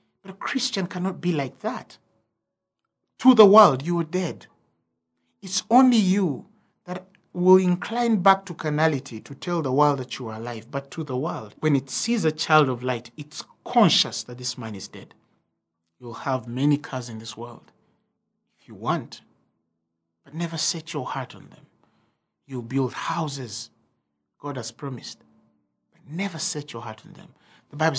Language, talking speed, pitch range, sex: English, 170 wpm, 120-175 Hz, male